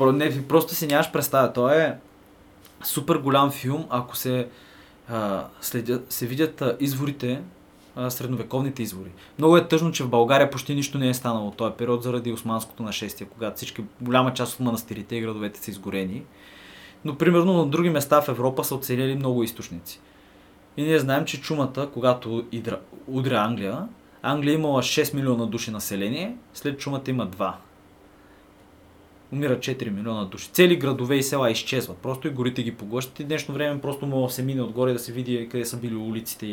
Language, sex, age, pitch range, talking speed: Bulgarian, male, 20-39, 105-140 Hz, 170 wpm